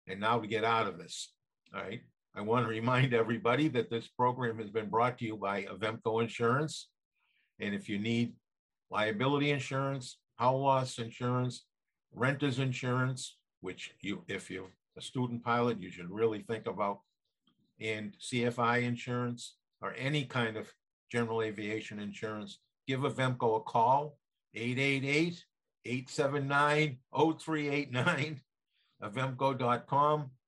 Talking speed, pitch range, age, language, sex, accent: 125 wpm, 115-135 Hz, 50-69, English, male, American